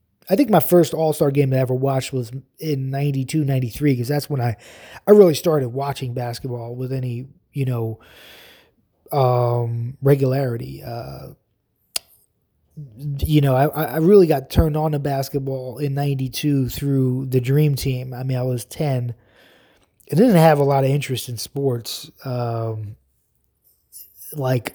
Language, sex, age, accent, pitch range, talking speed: English, male, 20-39, American, 120-145 Hz, 150 wpm